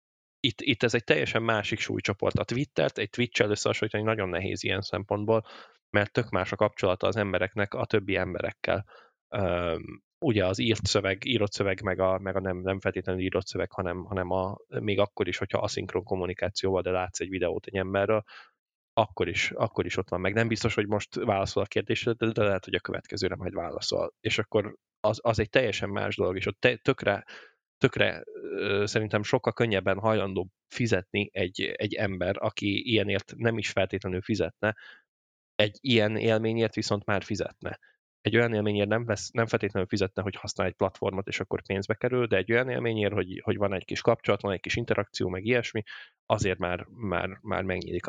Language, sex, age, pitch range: Hungarian, male, 10-29, 95-110 Hz